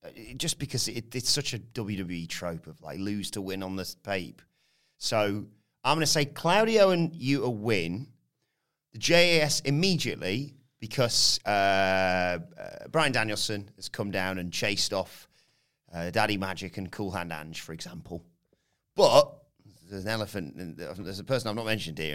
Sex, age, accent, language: male, 30-49, British, English